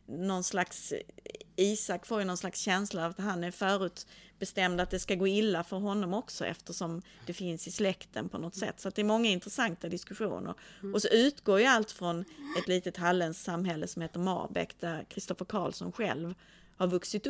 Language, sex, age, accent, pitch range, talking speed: Swedish, female, 30-49, native, 175-205 Hz, 190 wpm